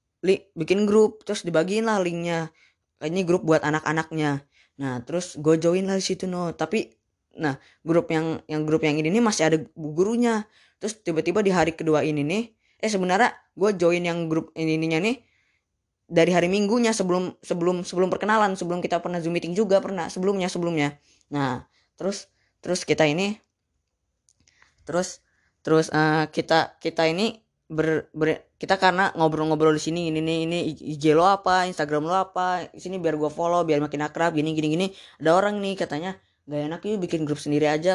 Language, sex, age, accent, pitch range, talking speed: Indonesian, female, 20-39, native, 155-190 Hz, 170 wpm